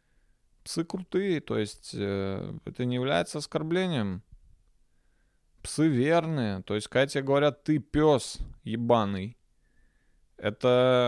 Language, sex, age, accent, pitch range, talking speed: Russian, male, 20-39, native, 110-150 Hz, 95 wpm